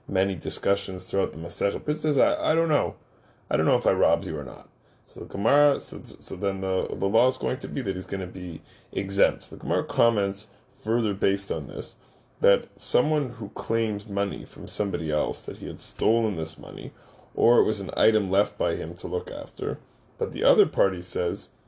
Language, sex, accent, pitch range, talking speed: English, male, American, 100-125 Hz, 210 wpm